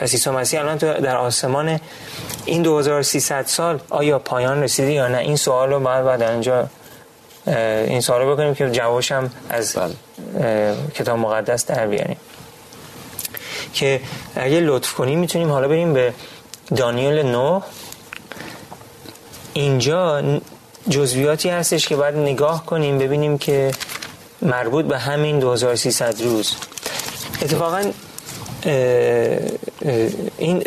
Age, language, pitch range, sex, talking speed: 30-49, Persian, 125-155 Hz, male, 115 wpm